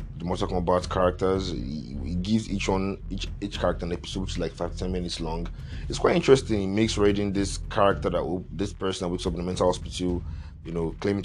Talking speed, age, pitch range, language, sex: 225 wpm, 30-49, 85-100 Hz, English, male